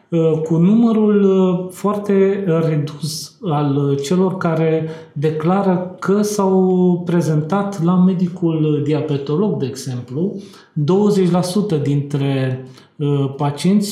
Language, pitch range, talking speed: Romanian, 150-185 Hz, 80 wpm